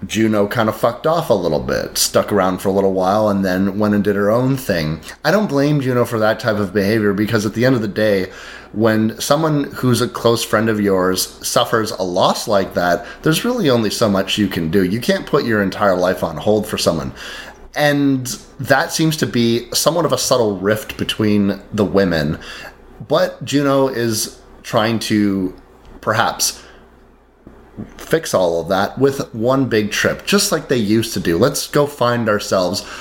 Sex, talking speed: male, 195 wpm